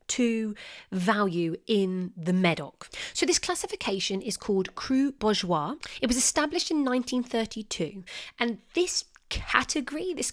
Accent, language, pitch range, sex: British, English, 180-240 Hz, female